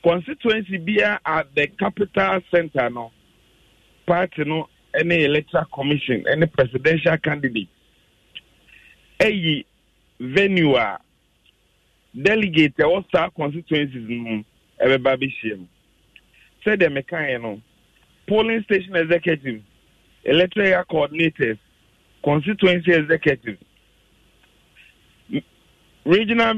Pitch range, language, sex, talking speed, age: 125-190 Hz, English, male, 75 wpm, 50-69